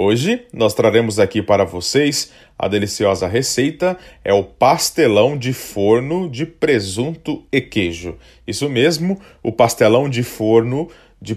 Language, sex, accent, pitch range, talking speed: Portuguese, male, Brazilian, 105-160 Hz, 130 wpm